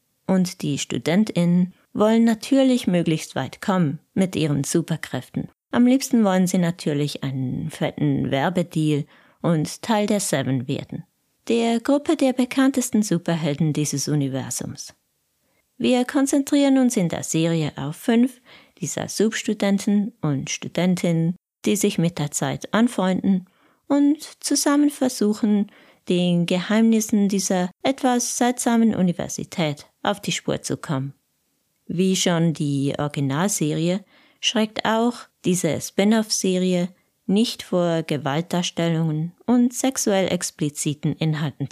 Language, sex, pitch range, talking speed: German, female, 155-220 Hz, 110 wpm